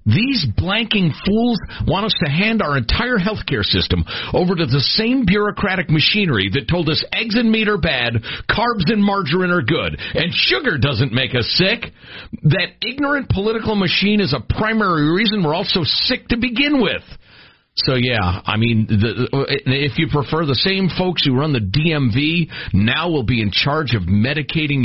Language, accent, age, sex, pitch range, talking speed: English, American, 50-69, male, 120-185 Hz, 175 wpm